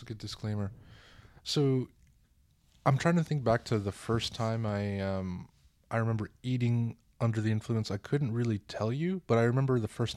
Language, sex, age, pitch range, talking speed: English, male, 20-39, 95-115 Hz, 185 wpm